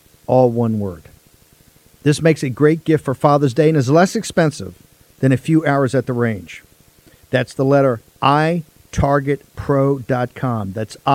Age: 50-69